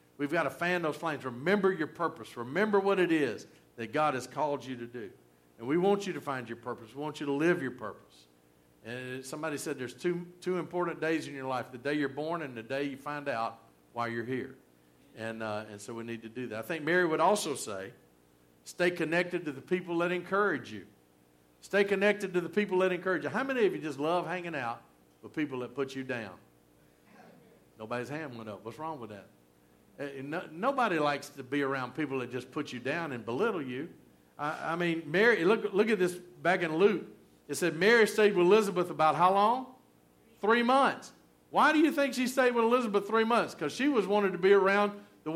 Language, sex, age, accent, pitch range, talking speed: English, male, 50-69, American, 125-205 Hz, 225 wpm